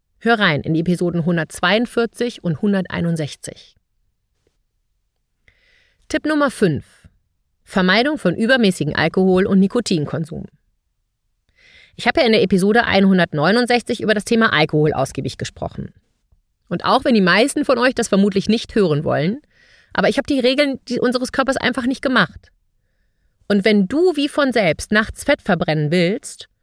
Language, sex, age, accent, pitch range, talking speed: German, female, 30-49, German, 160-235 Hz, 140 wpm